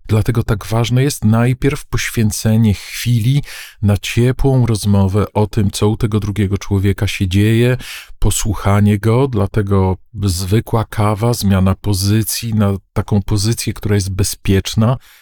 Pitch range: 100-120 Hz